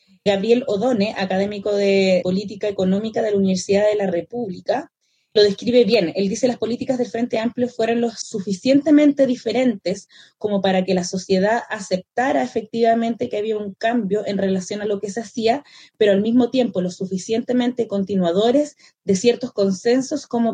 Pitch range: 195-235 Hz